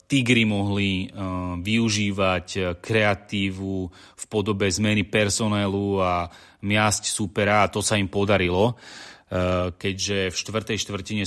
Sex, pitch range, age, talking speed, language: male, 95-115 Hz, 30-49, 115 wpm, Slovak